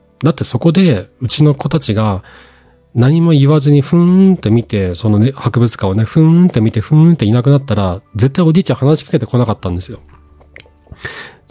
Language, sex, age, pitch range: Japanese, male, 40-59, 110-160 Hz